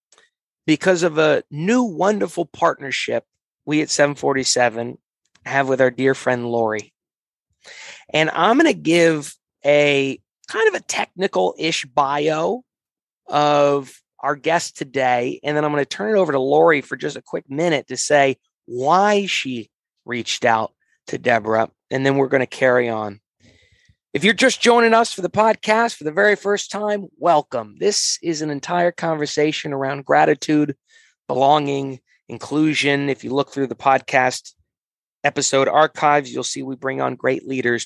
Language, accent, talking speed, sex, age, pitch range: English, American, 155 wpm, male, 30-49, 130-170 Hz